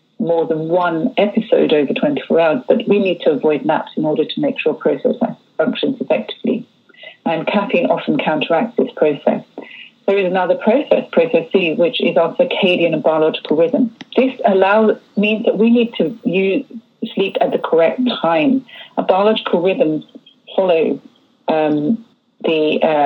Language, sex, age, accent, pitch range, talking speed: English, female, 40-59, British, 180-250 Hz, 155 wpm